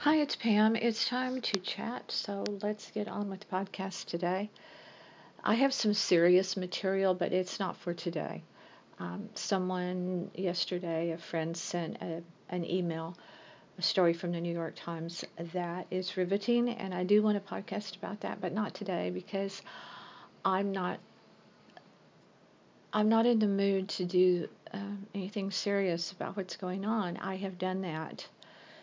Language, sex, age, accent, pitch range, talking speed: English, female, 50-69, American, 175-205 Hz, 155 wpm